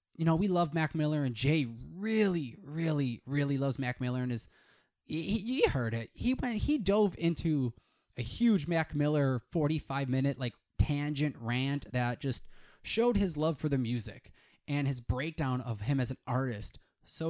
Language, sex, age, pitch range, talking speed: English, male, 20-39, 125-165 Hz, 175 wpm